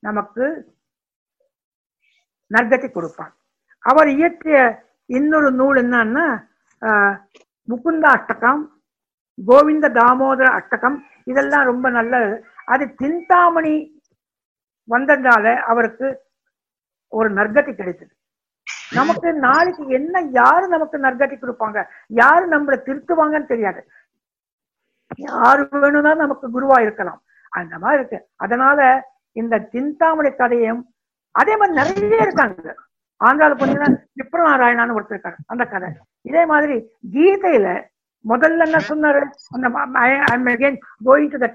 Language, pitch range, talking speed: English, 235-300 Hz, 65 wpm